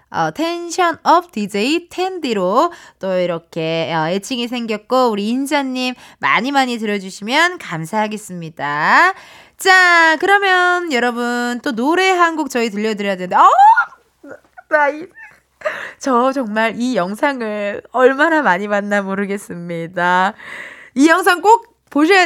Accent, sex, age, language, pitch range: native, female, 20-39, Korean, 200-320 Hz